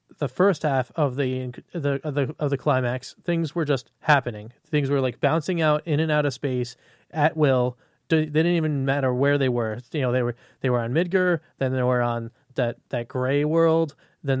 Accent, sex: American, male